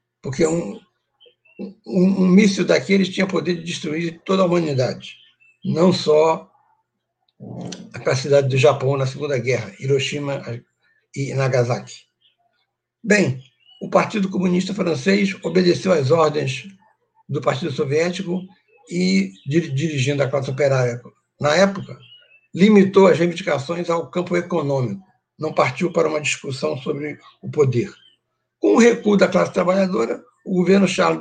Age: 60-79